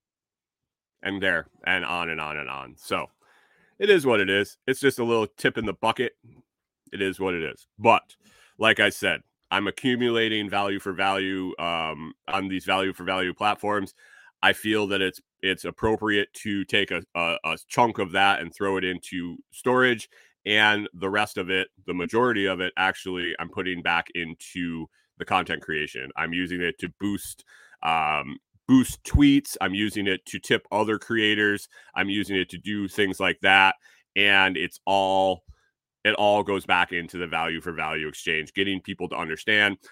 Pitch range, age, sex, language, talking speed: 90-105 Hz, 30-49, male, English, 175 wpm